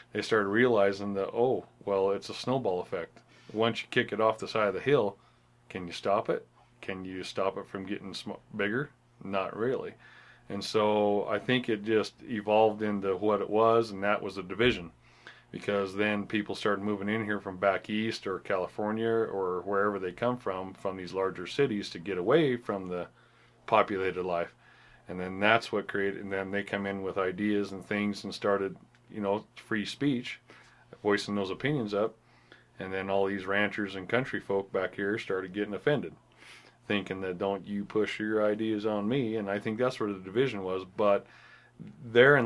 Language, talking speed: English, 190 wpm